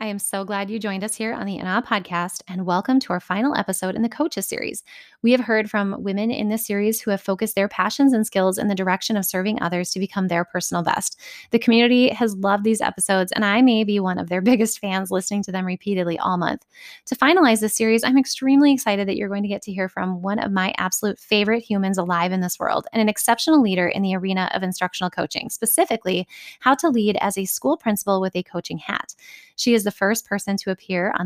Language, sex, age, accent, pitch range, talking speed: English, female, 20-39, American, 185-225 Hz, 240 wpm